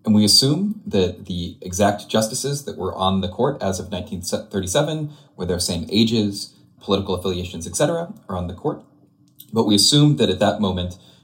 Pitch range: 90-110 Hz